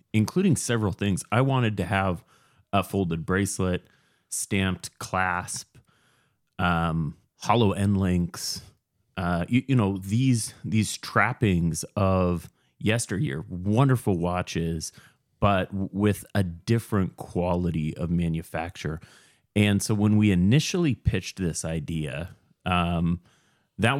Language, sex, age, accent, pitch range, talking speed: English, male, 30-49, American, 85-110 Hz, 110 wpm